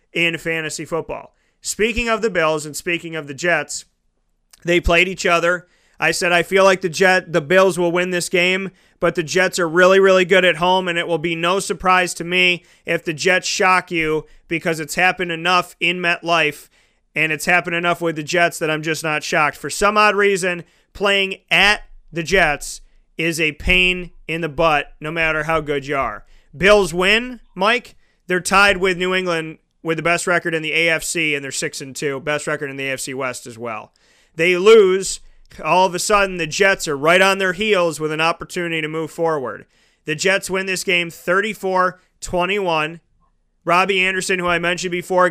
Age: 30-49